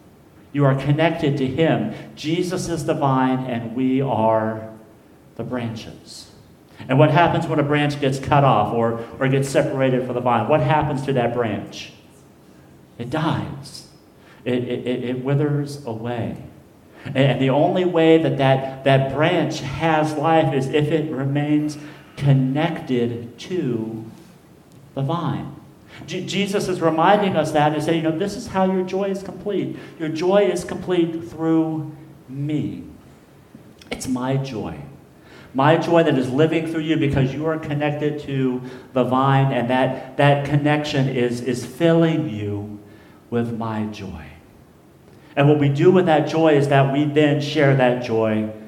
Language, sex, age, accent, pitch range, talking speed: English, male, 50-69, American, 125-155 Hz, 155 wpm